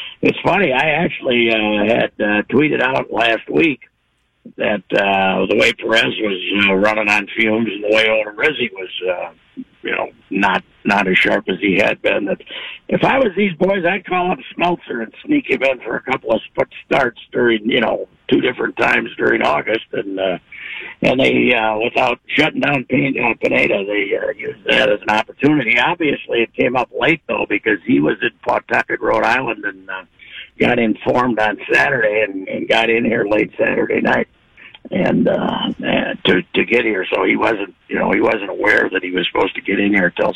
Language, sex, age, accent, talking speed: English, male, 60-79, American, 200 wpm